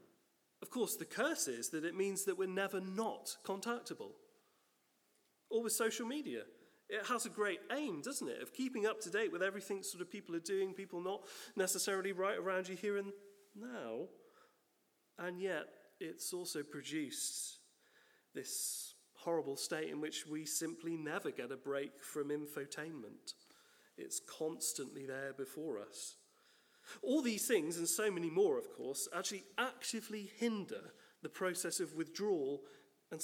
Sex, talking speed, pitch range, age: male, 155 wpm, 160-260 Hz, 30-49